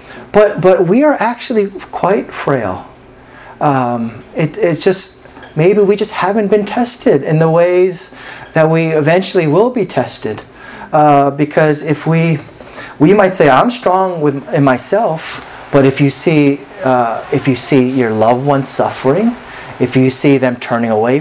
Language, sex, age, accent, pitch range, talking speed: English, male, 30-49, American, 130-180 Hz, 160 wpm